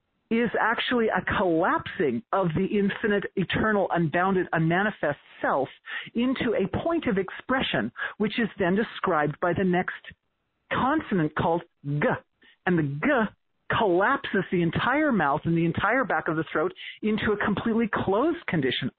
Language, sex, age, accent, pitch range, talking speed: English, male, 40-59, American, 160-210 Hz, 140 wpm